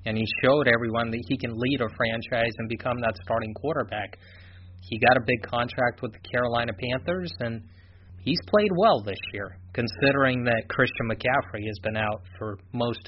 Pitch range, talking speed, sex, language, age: 105-140 Hz, 180 wpm, male, English, 30-49